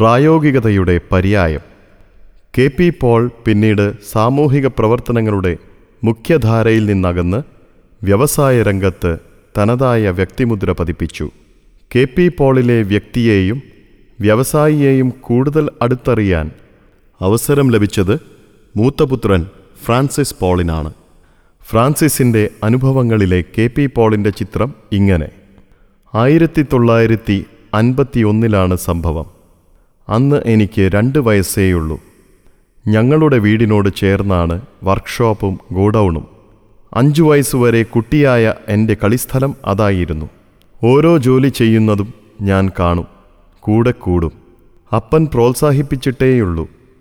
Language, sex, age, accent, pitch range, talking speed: Malayalam, male, 30-49, native, 95-125 Hz, 75 wpm